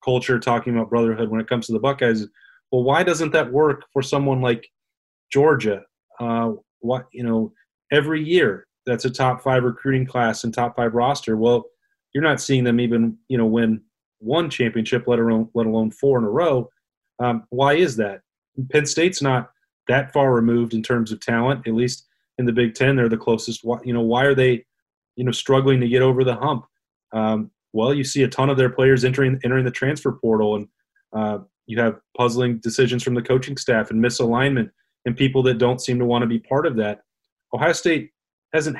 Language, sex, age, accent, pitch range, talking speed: English, male, 30-49, American, 115-135 Hz, 205 wpm